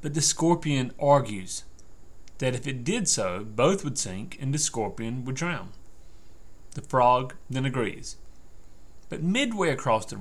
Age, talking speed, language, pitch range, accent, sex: 30-49, 145 wpm, English, 115-160 Hz, American, male